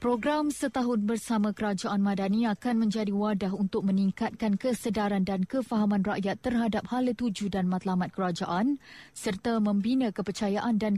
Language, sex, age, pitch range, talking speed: Malay, female, 20-39, 200-235 Hz, 130 wpm